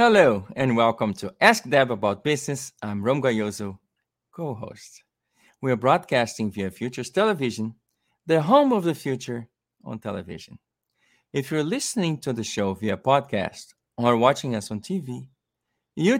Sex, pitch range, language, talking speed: male, 115-185 Hz, English, 145 wpm